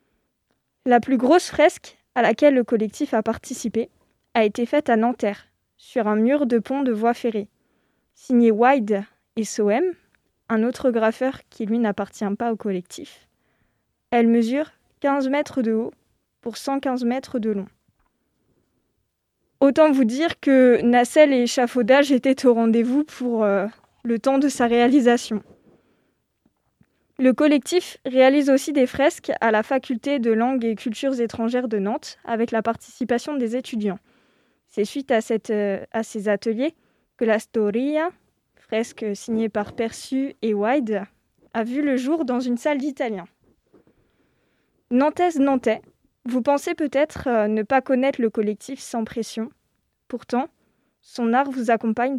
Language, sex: French, female